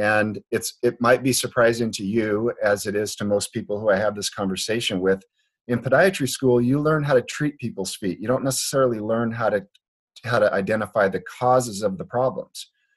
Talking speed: 205 wpm